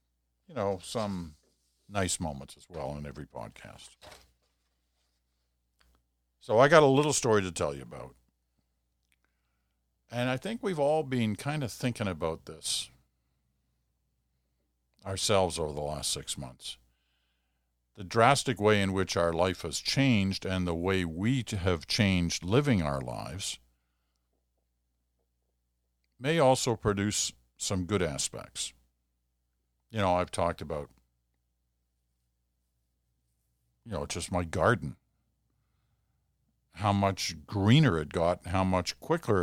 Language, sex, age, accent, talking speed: English, male, 50-69, American, 120 wpm